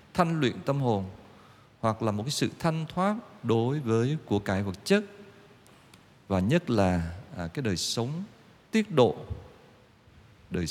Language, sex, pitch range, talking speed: Vietnamese, male, 100-145 Hz, 145 wpm